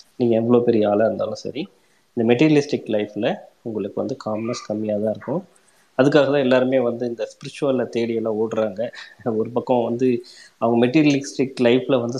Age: 20-39